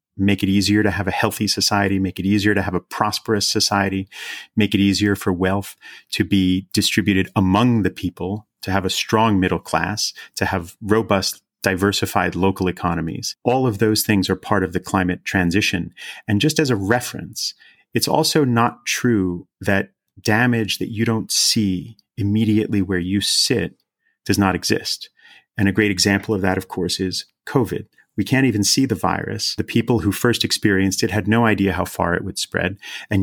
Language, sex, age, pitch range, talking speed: English, male, 30-49, 95-110 Hz, 185 wpm